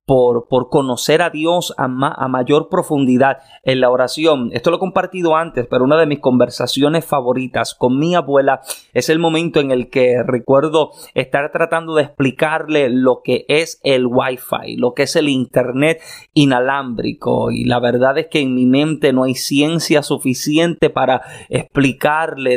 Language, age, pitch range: Spanish, 30-49, 130-160 Hz